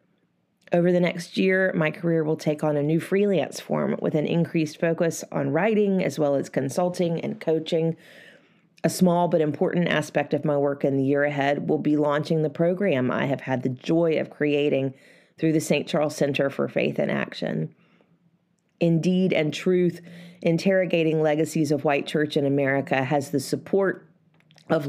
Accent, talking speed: American, 175 wpm